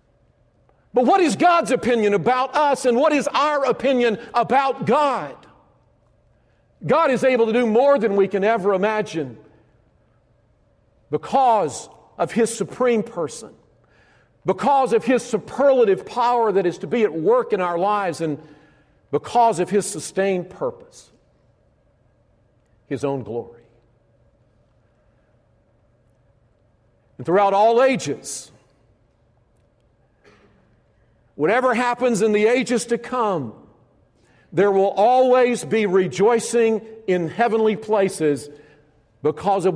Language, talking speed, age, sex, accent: English, 110 wpm, 50-69, male, American